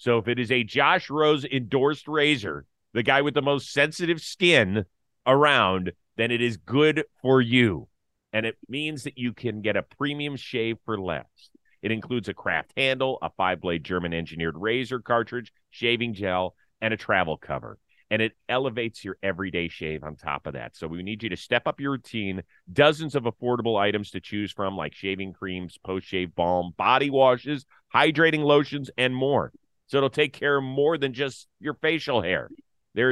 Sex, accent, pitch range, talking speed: male, American, 95-140 Hz, 180 wpm